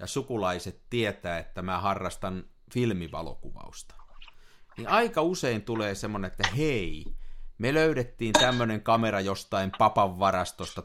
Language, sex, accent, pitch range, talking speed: Finnish, male, native, 90-120 Hz, 110 wpm